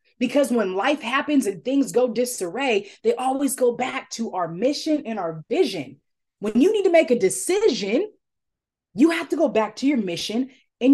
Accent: American